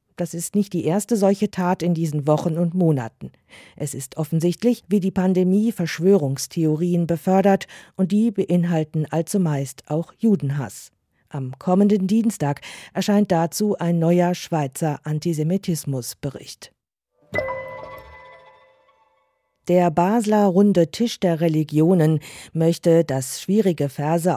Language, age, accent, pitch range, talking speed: German, 40-59, German, 145-190 Hz, 110 wpm